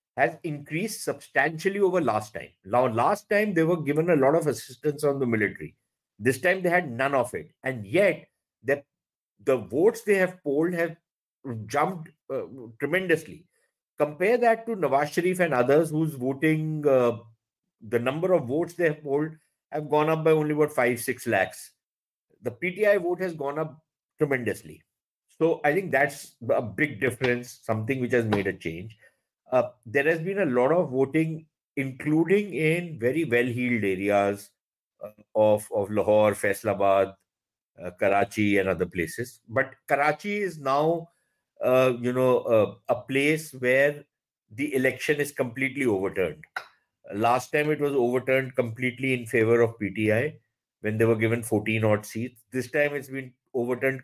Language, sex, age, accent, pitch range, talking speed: English, male, 50-69, Indian, 115-160 Hz, 160 wpm